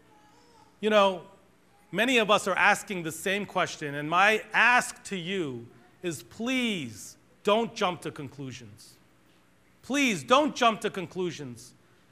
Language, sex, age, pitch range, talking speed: English, male, 40-59, 160-225 Hz, 130 wpm